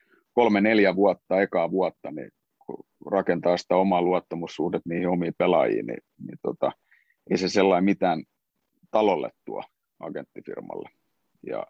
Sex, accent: male, native